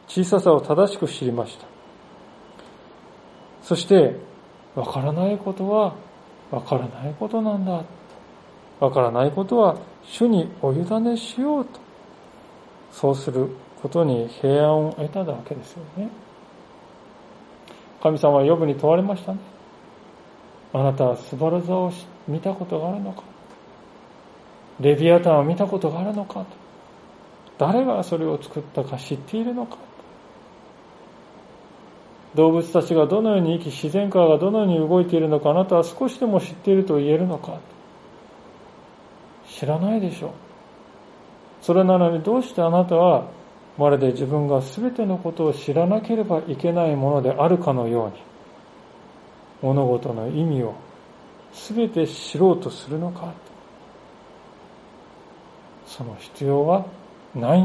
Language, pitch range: Japanese, 145-195 Hz